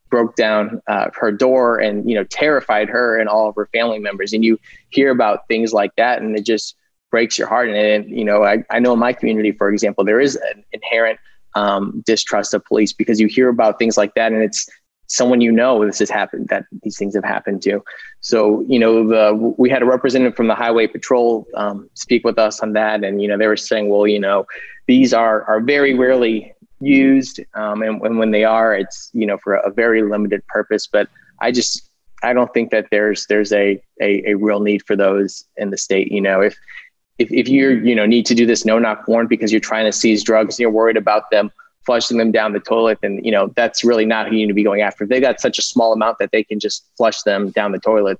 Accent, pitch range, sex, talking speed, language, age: American, 105-115 Hz, male, 245 wpm, English, 20-39